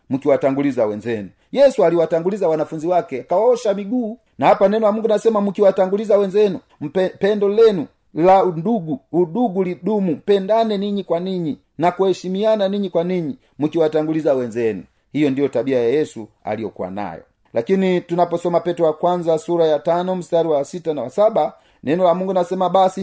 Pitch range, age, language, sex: 150-200 Hz, 40-59, Swahili, male